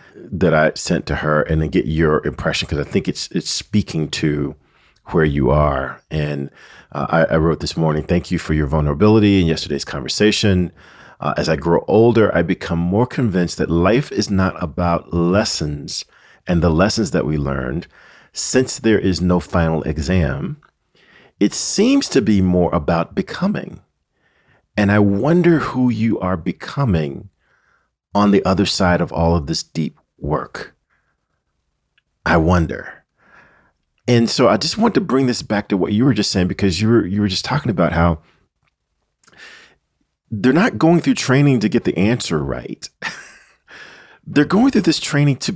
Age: 40-59